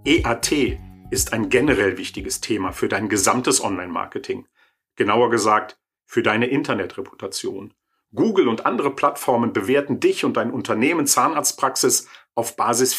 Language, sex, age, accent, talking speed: German, male, 50-69, German, 125 wpm